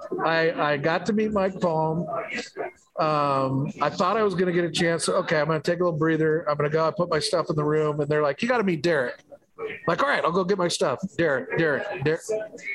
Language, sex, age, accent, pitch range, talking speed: English, male, 50-69, American, 165-210 Hz, 265 wpm